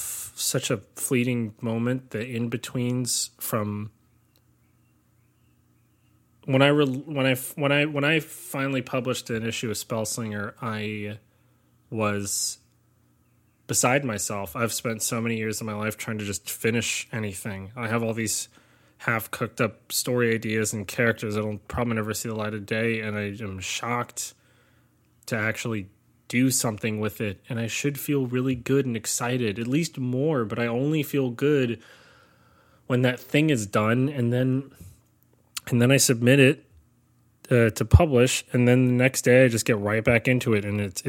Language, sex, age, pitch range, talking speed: English, male, 20-39, 110-130 Hz, 165 wpm